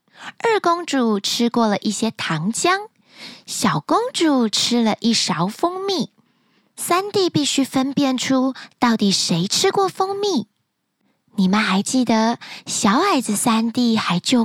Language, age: Chinese, 20-39